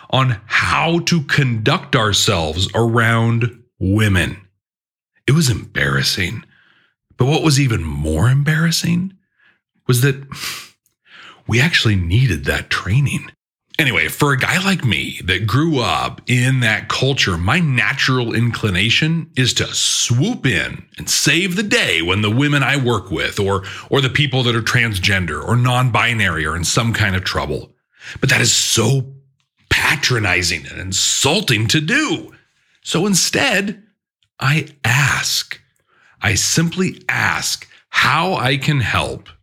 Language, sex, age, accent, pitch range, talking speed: English, male, 40-59, American, 105-150 Hz, 130 wpm